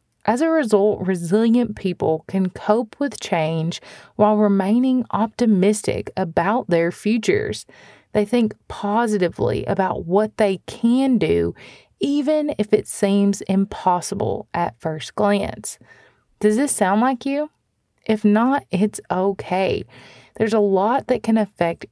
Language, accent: English, American